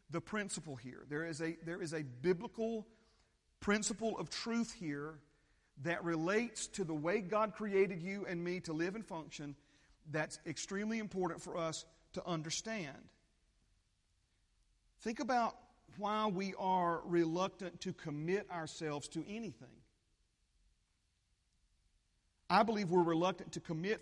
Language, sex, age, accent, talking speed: English, male, 40-59, American, 130 wpm